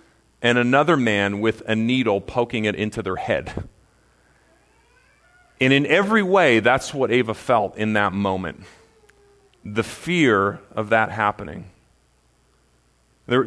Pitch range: 100-125 Hz